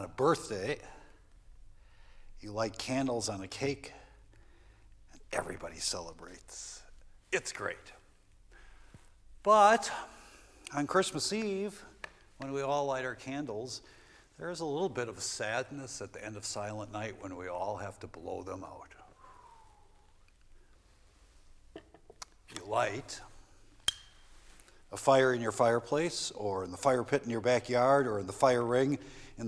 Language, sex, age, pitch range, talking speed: English, male, 60-79, 100-130 Hz, 130 wpm